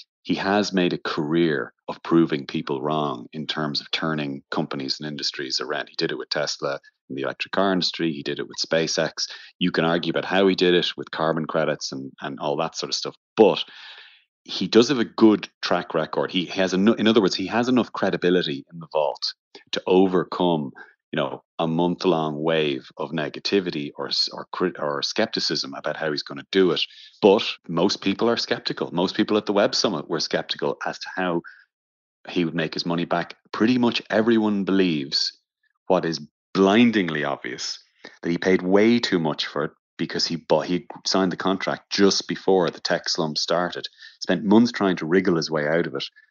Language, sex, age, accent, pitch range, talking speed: English, male, 30-49, Irish, 80-95 Hz, 195 wpm